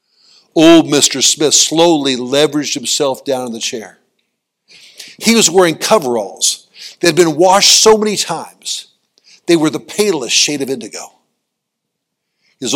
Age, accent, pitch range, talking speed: 60-79, American, 135-180 Hz, 135 wpm